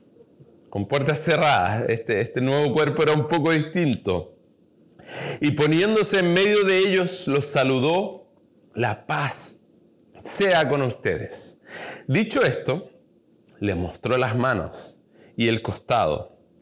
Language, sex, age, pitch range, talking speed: Spanish, male, 30-49, 120-160 Hz, 120 wpm